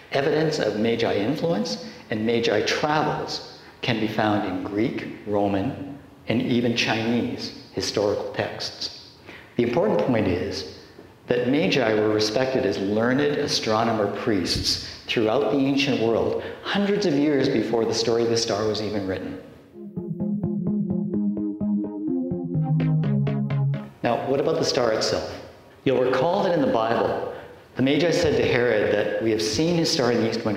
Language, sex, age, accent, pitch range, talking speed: English, male, 50-69, American, 105-140 Hz, 140 wpm